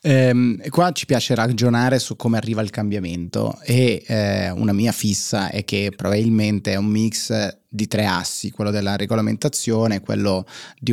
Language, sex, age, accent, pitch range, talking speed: Italian, male, 30-49, native, 100-120 Hz, 160 wpm